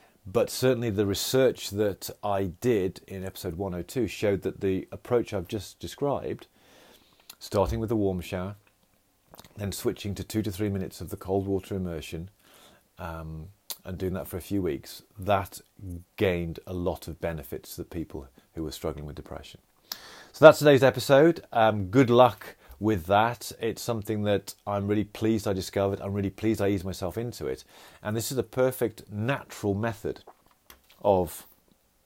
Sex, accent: male, British